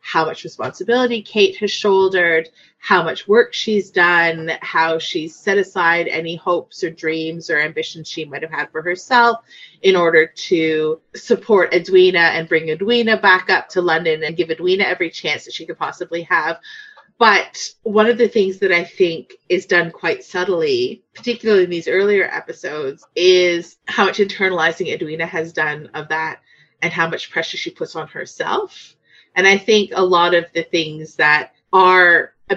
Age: 30-49